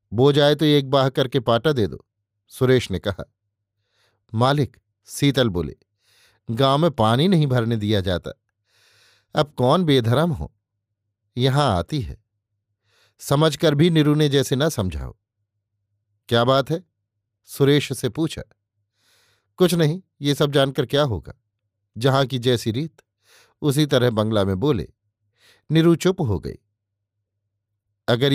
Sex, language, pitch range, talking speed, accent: male, Hindi, 105-145 Hz, 135 wpm, native